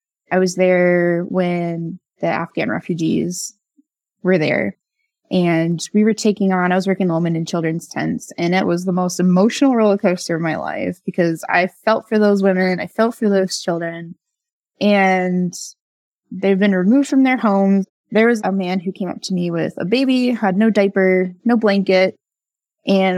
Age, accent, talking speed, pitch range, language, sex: 20-39, American, 175 wpm, 175-215 Hz, English, female